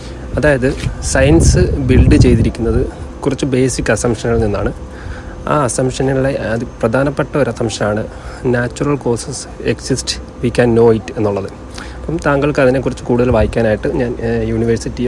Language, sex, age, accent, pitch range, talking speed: Malayalam, male, 30-49, native, 105-135 Hz, 115 wpm